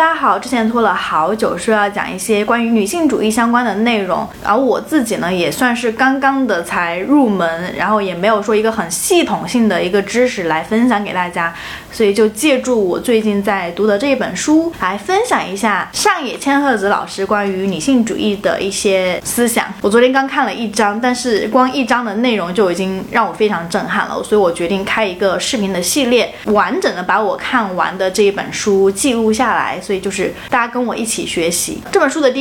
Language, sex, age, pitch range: Chinese, female, 20-39, 195-255 Hz